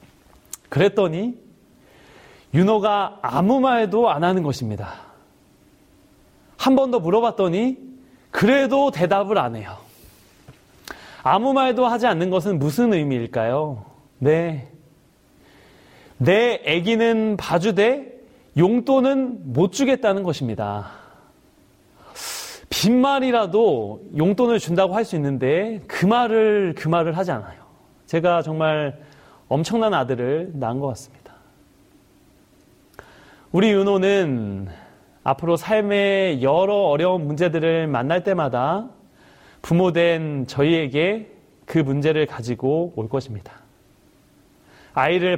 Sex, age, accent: male, 30-49, native